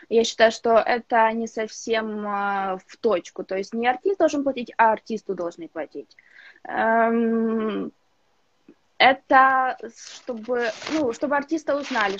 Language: Ukrainian